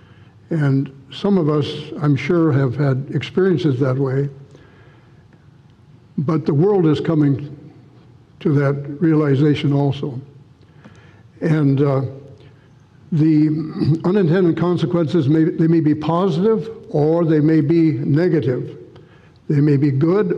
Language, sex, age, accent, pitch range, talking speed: English, male, 60-79, American, 140-170 Hz, 110 wpm